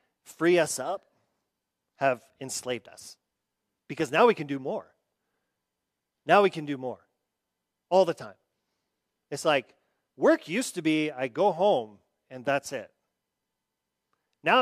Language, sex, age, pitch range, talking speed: English, male, 40-59, 125-165 Hz, 135 wpm